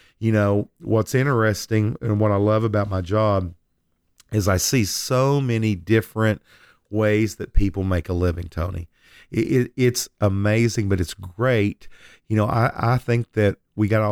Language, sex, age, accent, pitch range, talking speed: English, male, 40-59, American, 95-115 Hz, 160 wpm